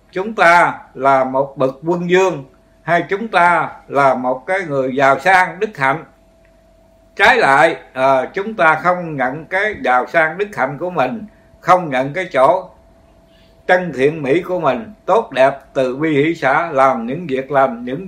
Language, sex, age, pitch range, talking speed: Vietnamese, male, 60-79, 135-180 Hz, 170 wpm